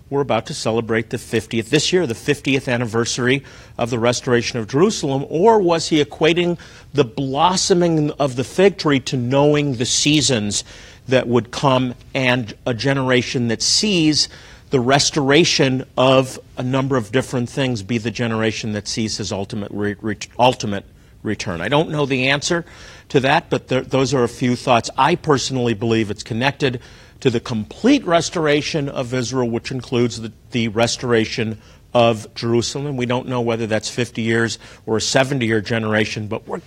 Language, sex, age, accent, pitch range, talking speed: English, male, 50-69, American, 115-145 Hz, 165 wpm